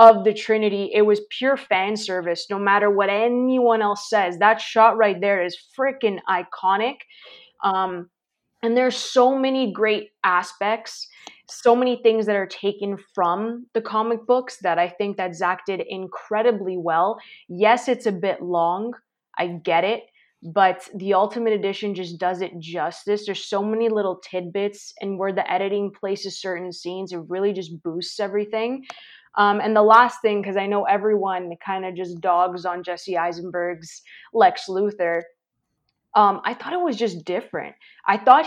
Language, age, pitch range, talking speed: English, 20-39, 180-220 Hz, 165 wpm